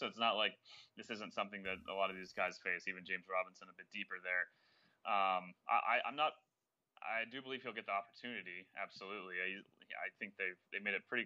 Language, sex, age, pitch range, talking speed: English, male, 20-39, 95-105 Hz, 220 wpm